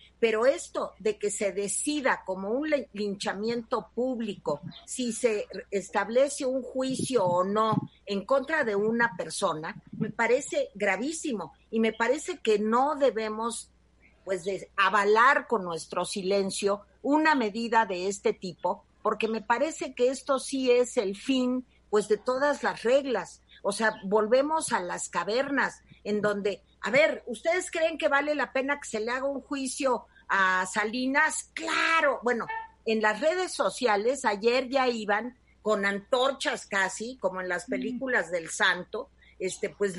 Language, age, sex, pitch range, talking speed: Spanish, 50-69, female, 200-265 Hz, 150 wpm